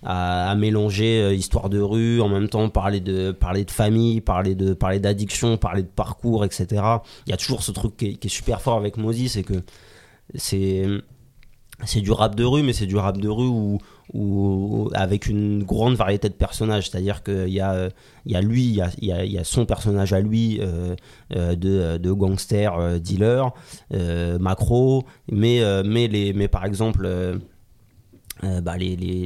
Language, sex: French, male